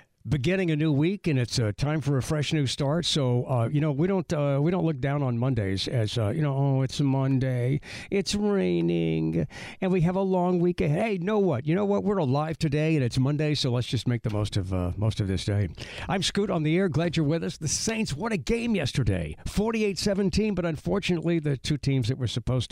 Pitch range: 110-150 Hz